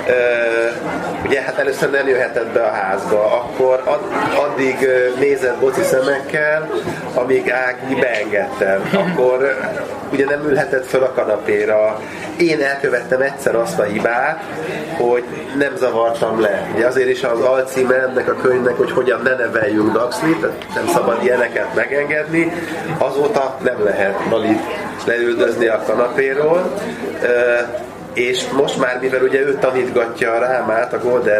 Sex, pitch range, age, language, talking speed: male, 120-145 Hz, 30-49, Hungarian, 135 wpm